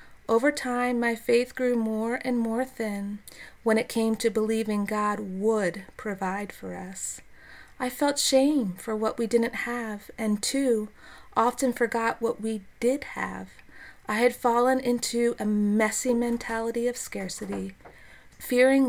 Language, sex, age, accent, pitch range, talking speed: English, female, 30-49, American, 210-245 Hz, 145 wpm